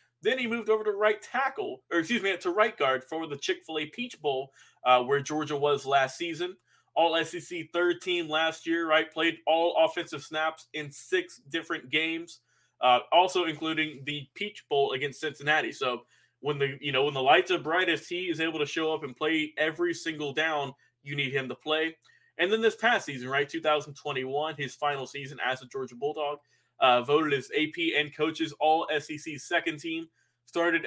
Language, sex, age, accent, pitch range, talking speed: English, male, 20-39, American, 145-170 Hz, 190 wpm